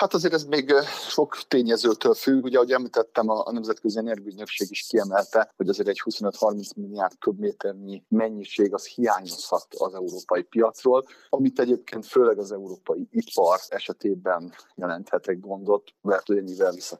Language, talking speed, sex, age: Hungarian, 140 wpm, male, 50-69